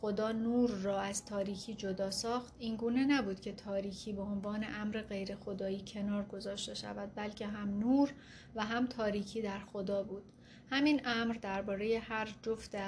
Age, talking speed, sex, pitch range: 30-49, 155 wpm, female, 200-225 Hz